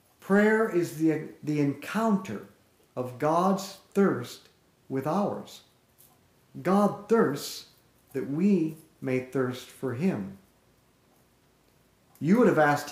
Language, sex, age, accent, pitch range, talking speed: English, male, 50-69, American, 125-175 Hz, 100 wpm